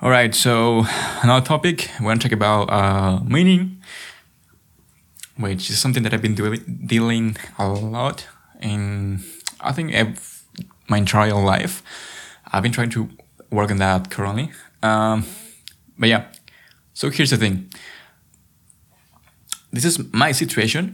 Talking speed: 125 wpm